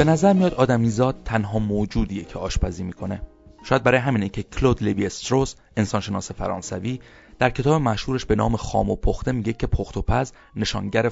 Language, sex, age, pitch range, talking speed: Persian, male, 30-49, 105-130 Hz, 175 wpm